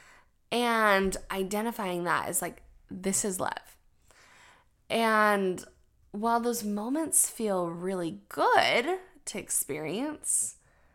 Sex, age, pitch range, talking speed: female, 20-39, 180-225 Hz, 95 wpm